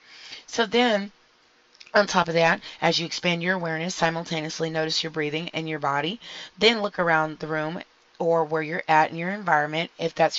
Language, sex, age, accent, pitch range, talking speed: English, female, 30-49, American, 155-170 Hz, 185 wpm